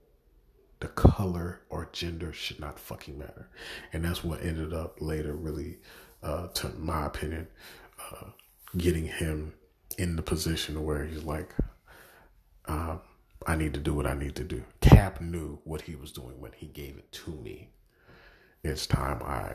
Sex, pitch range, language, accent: male, 80-90 Hz, English, American